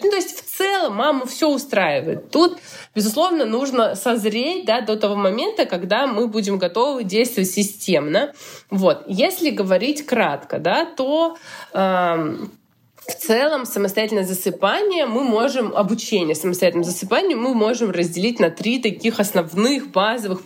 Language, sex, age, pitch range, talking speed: Russian, female, 20-39, 190-255 Hz, 135 wpm